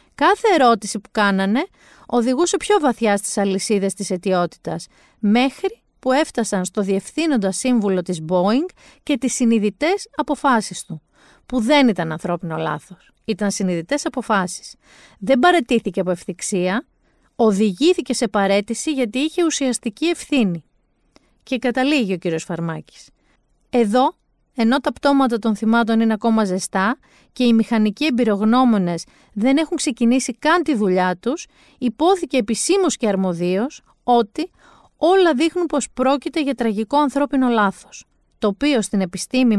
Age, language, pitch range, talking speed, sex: 40-59, Greek, 195-275 Hz, 130 wpm, female